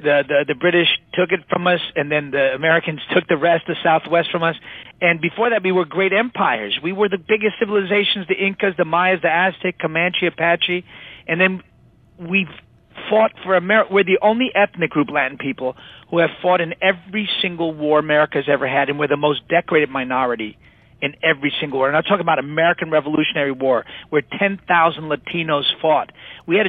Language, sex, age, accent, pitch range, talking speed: English, male, 40-59, American, 150-185 Hz, 190 wpm